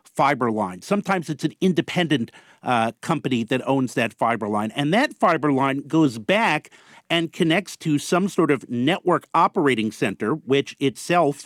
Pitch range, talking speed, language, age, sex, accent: 135-165 Hz, 155 wpm, English, 50-69, male, American